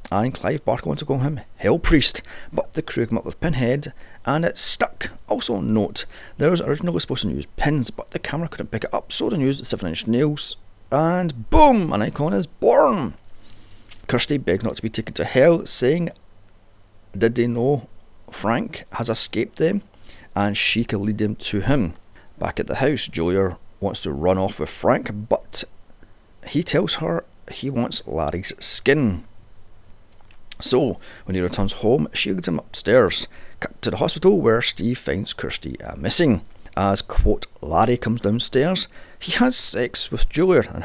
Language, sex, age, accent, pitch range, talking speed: English, male, 30-49, British, 95-130 Hz, 175 wpm